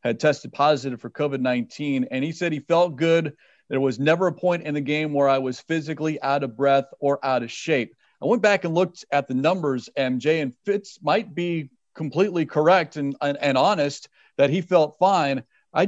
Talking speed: 205 wpm